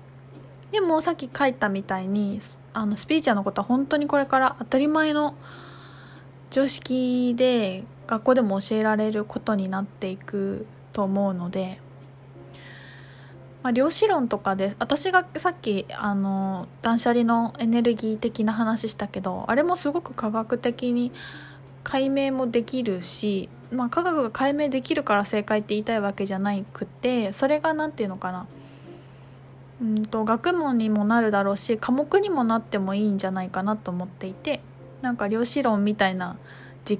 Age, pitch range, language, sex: 20-39, 190-255 Hz, Japanese, female